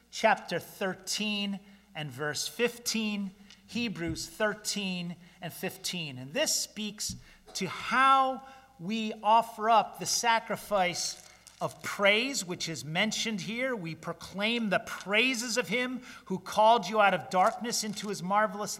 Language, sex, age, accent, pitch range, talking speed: English, male, 40-59, American, 160-215 Hz, 130 wpm